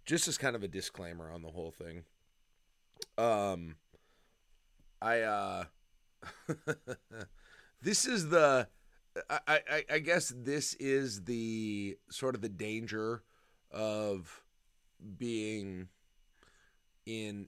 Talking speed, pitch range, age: 105 wpm, 90-115 Hz, 30-49